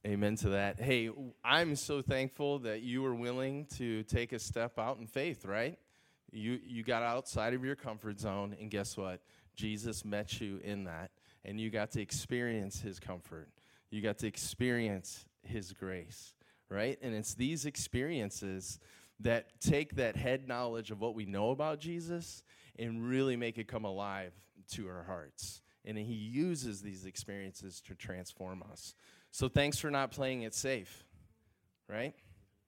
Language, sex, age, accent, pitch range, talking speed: English, male, 20-39, American, 100-120 Hz, 165 wpm